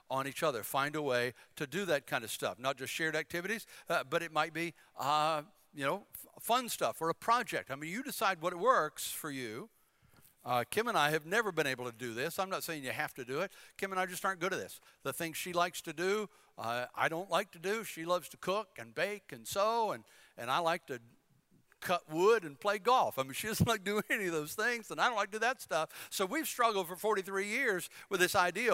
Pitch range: 150-205 Hz